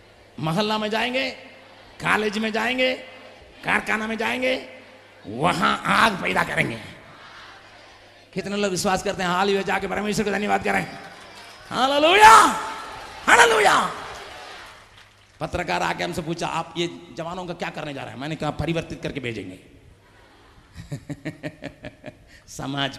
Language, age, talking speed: Hindi, 50-69, 105 wpm